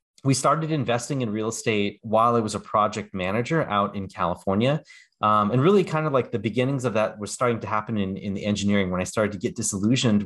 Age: 30-49